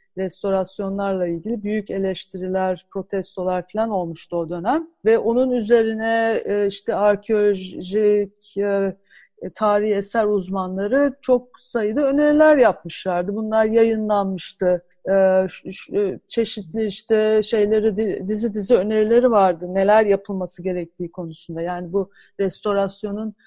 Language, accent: Turkish, native